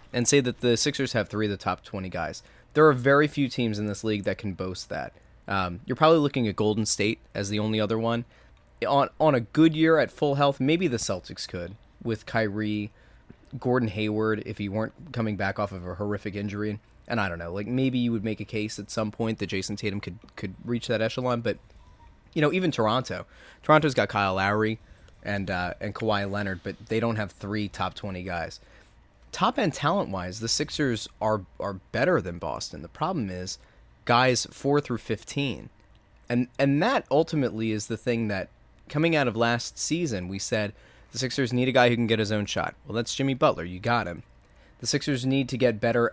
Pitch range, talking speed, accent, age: 100-125 Hz, 210 wpm, American, 20-39